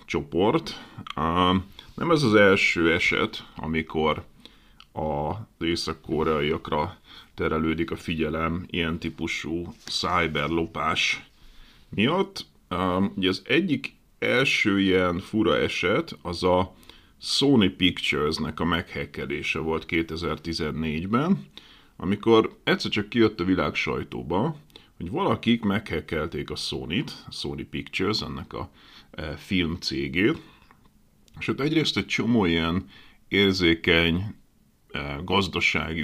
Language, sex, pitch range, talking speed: Hungarian, male, 80-110 Hz, 100 wpm